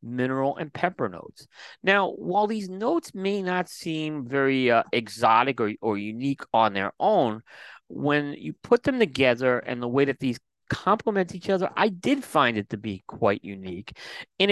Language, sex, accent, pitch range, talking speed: English, male, American, 110-150 Hz, 175 wpm